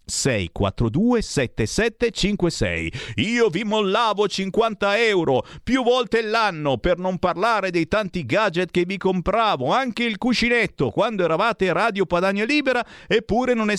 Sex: male